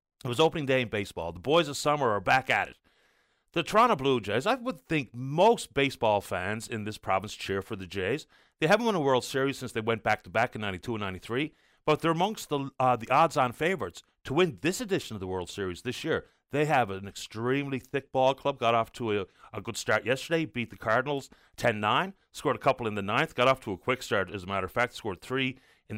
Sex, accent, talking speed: male, American, 235 wpm